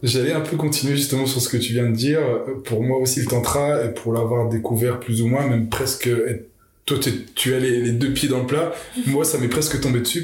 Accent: French